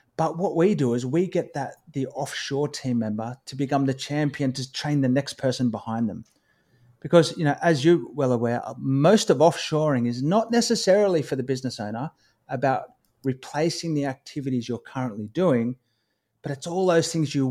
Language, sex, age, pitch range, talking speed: English, male, 30-49, 120-160 Hz, 180 wpm